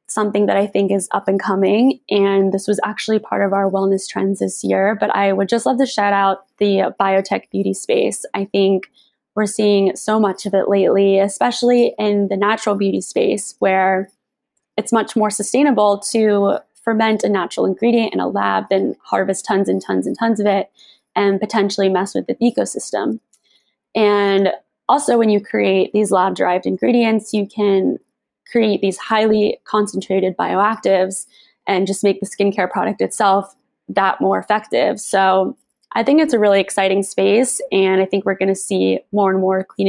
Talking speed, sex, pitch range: 180 wpm, female, 190-215 Hz